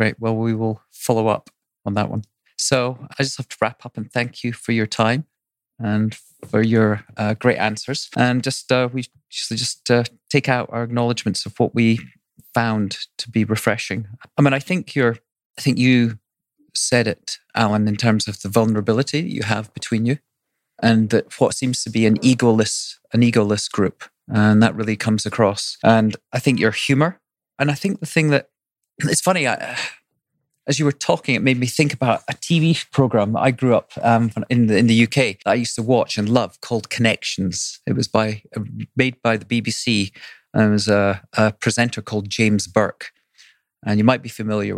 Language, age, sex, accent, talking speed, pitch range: English, 30-49, male, British, 195 wpm, 110-130 Hz